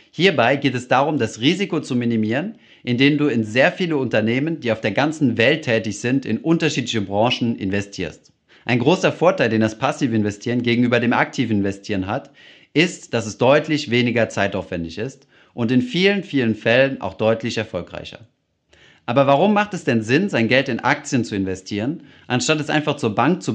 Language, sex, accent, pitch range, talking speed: German, male, German, 110-145 Hz, 175 wpm